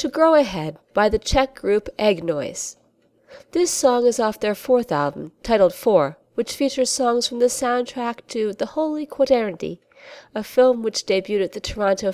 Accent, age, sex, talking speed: American, 40-59, female, 170 wpm